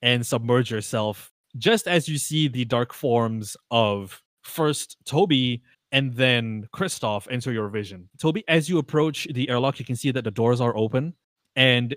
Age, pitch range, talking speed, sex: 20-39, 110-140 Hz, 170 wpm, male